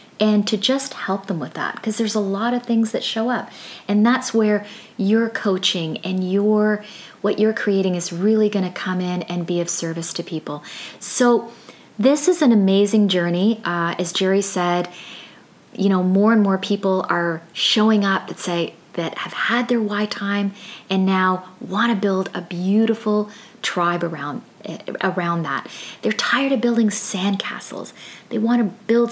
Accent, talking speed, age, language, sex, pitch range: American, 175 wpm, 30-49, English, female, 180-225 Hz